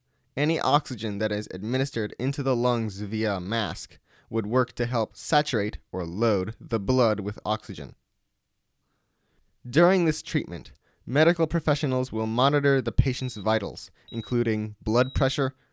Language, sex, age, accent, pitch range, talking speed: English, male, 20-39, American, 105-130 Hz, 135 wpm